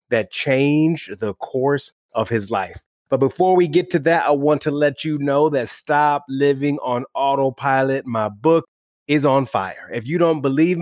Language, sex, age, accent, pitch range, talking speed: English, male, 30-49, American, 120-145 Hz, 185 wpm